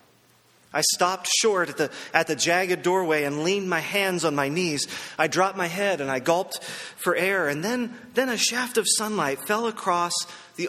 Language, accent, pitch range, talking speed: English, American, 150-195 Hz, 195 wpm